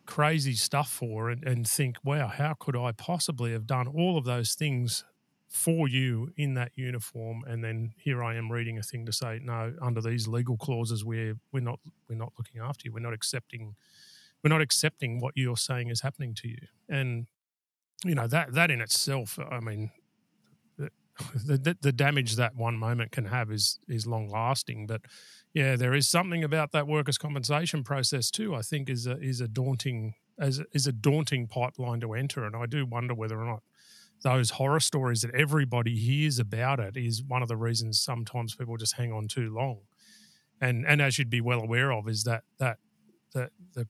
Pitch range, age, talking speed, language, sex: 115-140 Hz, 40-59, 200 wpm, English, male